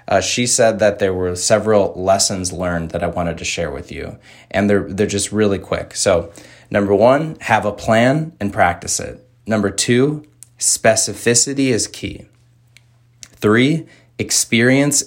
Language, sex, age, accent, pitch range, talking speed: English, male, 20-39, American, 95-120 Hz, 150 wpm